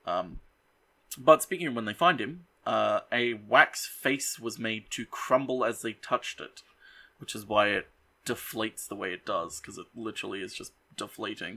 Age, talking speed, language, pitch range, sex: 20-39, 180 wpm, English, 110-130 Hz, male